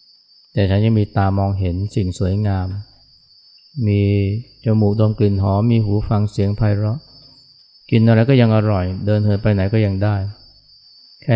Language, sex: Thai, male